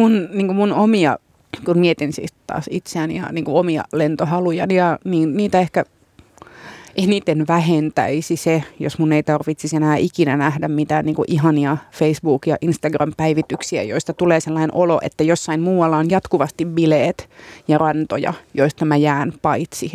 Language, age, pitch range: Finnish, 30-49, 155-175 Hz